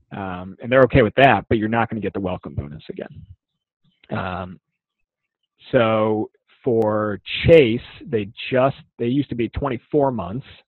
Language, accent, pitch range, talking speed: English, American, 95-120 Hz, 155 wpm